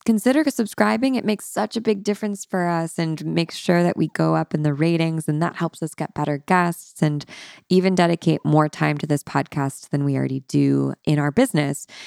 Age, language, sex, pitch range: 20-39, English, female, 145-195 Hz